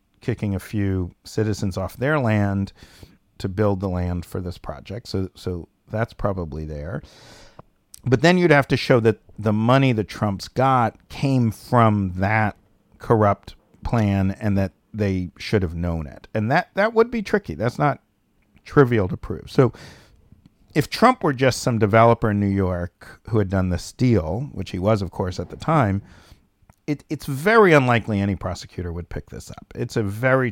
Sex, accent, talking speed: male, American, 175 wpm